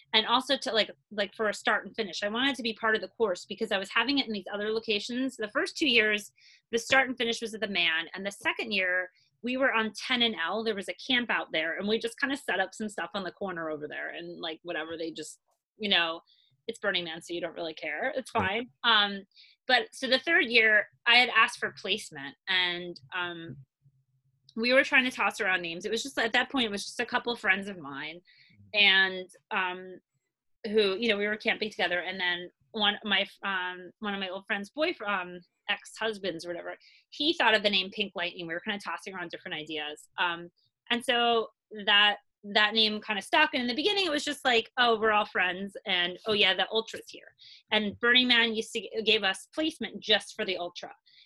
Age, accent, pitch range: 30-49, American, 180-230 Hz